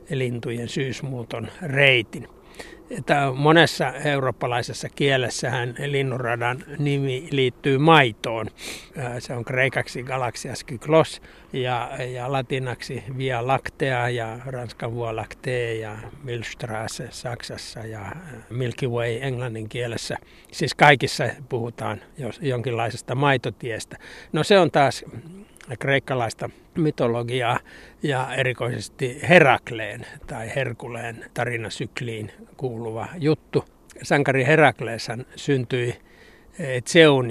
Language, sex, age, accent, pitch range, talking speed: Finnish, male, 60-79, native, 120-140 Hz, 90 wpm